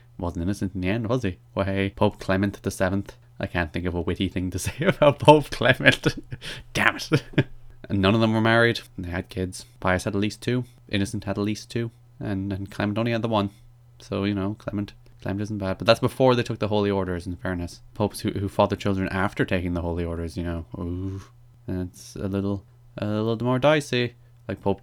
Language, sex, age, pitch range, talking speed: English, male, 20-39, 95-120 Hz, 225 wpm